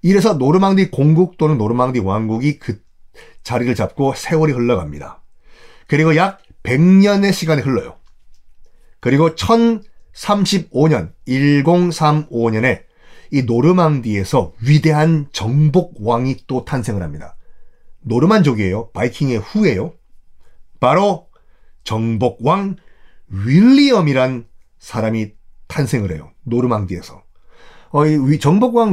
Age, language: 40-59, Korean